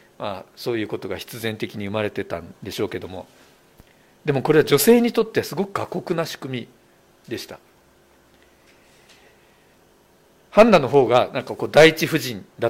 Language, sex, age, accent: Japanese, male, 50-69, native